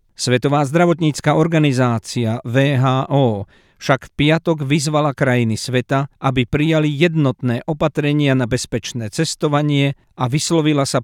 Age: 50-69